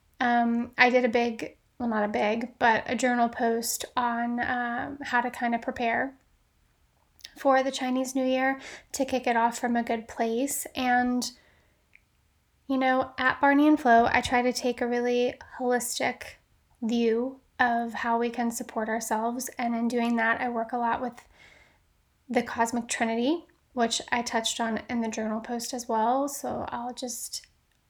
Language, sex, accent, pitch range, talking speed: English, female, American, 235-255 Hz, 170 wpm